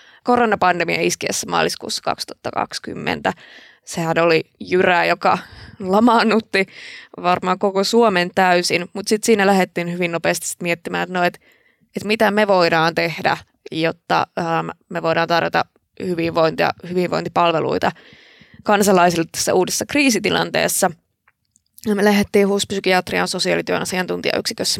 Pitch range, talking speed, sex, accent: 175-215 Hz, 110 wpm, female, native